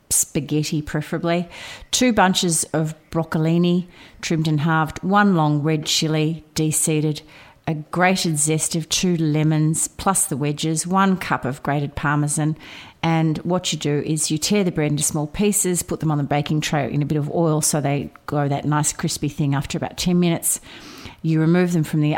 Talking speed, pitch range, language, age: 180 wpm, 150-170 Hz, English, 40-59